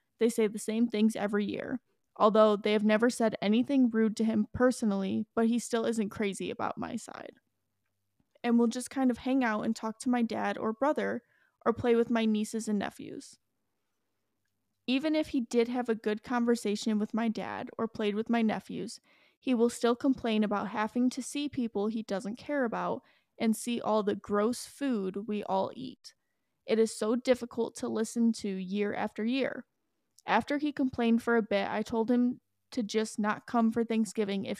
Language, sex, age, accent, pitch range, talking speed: English, female, 20-39, American, 215-245 Hz, 195 wpm